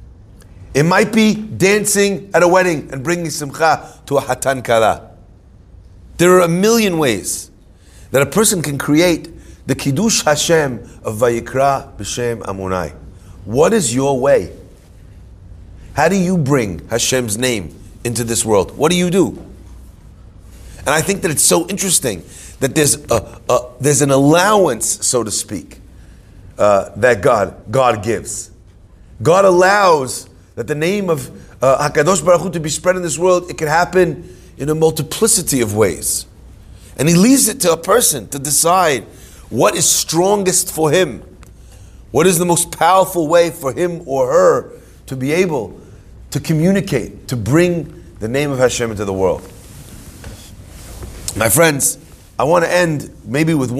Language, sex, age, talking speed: English, male, 40-59, 155 wpm